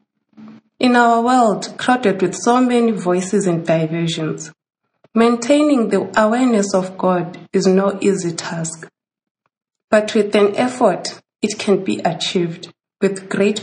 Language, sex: English, female